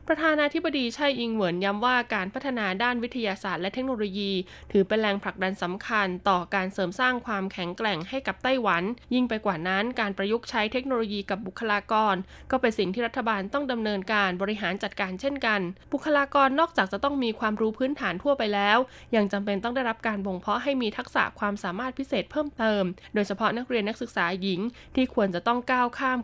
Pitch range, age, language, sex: 190-245 Hz, 20-39, Thai, female